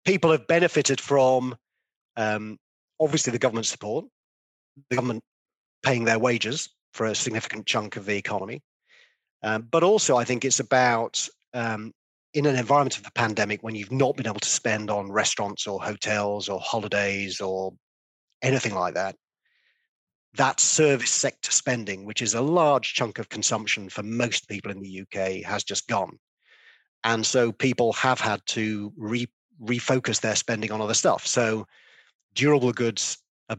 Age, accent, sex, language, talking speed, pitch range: 40-59, British, male, English, 160 wpm, 105-125 Hz